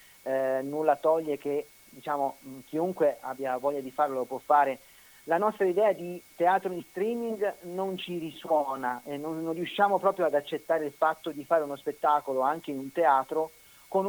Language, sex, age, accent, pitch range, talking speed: Italian, male, 40-59, native, 140-175 Hz, 175 wpm